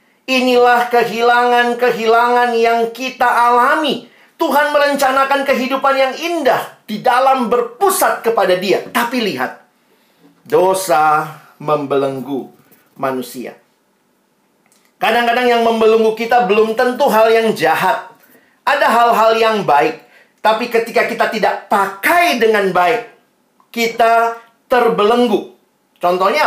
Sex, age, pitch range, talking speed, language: male, 40-59, 200-245 Hz, 95 wpm, Indonesian